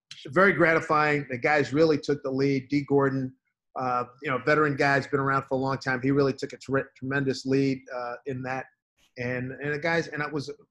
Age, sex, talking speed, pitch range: 40-59, male, 205 wpm, 125-140 Hz